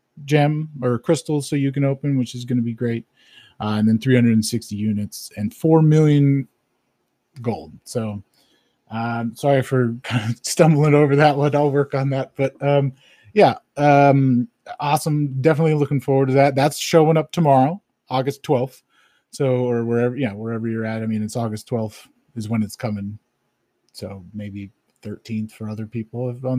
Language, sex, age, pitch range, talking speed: English, male, 30-49, 120-155 Hz, 170 wpm